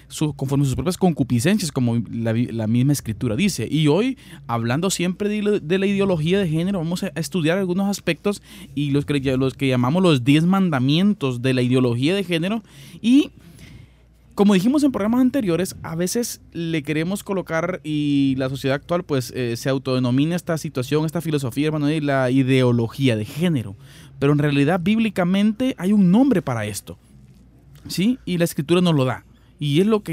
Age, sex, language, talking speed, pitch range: 20-39, male, Spanish, 180 wpm, 130-180 Hz